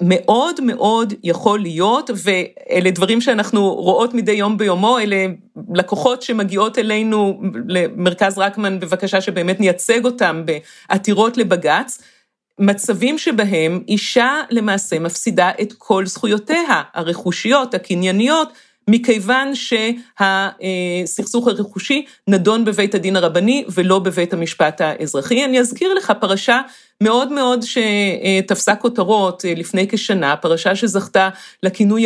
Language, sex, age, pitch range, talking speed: Hebrew, female, 40-59, 185-245 Hz, 105 wpm